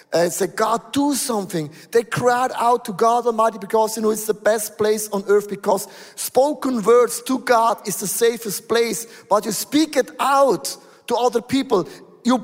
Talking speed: 195 wpm